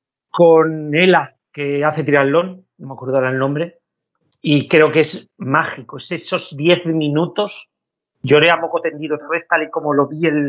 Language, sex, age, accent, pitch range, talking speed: Spanish, male, 40-59, Spanish, 150-175 Hz, 170 wpm